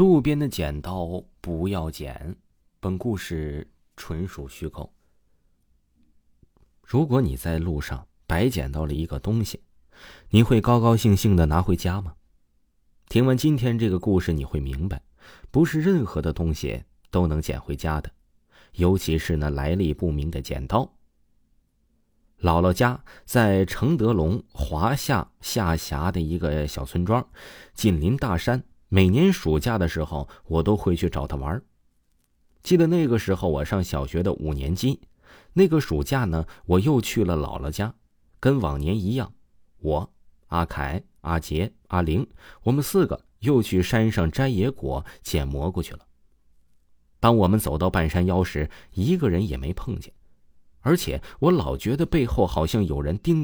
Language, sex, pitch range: Chinese, male, 75-110 Hz